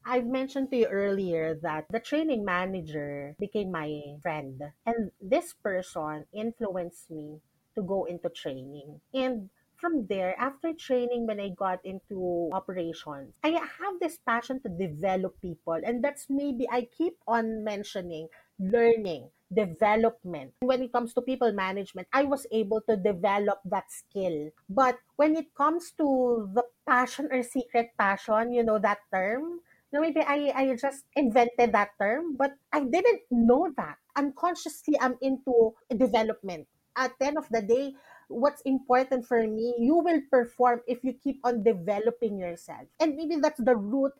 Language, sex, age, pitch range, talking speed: English, female, 30-49, 195-275 Hz, 155 wpm